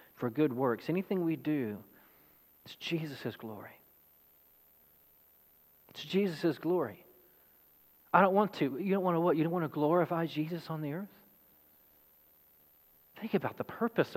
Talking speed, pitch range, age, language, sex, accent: 145 wpm, 120-180 Hz, 40-59, English, male, American